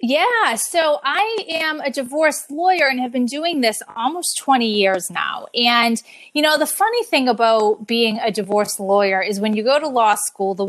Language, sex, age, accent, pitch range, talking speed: English, female, 30-49, American, 210-275 Hz, 195 wpm